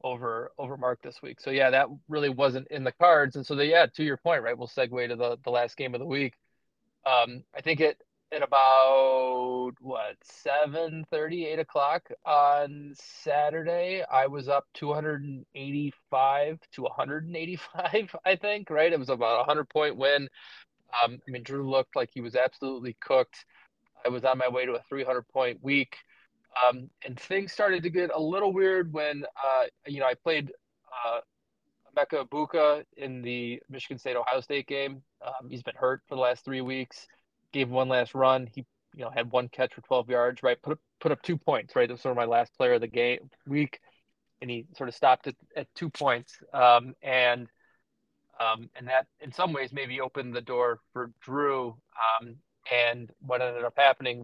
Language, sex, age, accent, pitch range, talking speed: English, male, 20-39, American, 125-150 Hz, 190 wpm